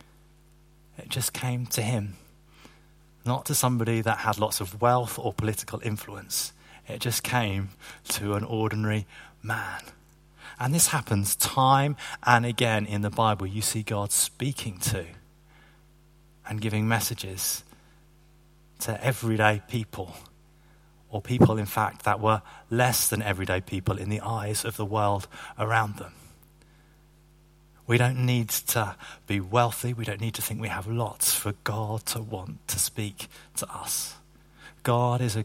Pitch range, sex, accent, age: 105-150 Hz, male, British, 30-49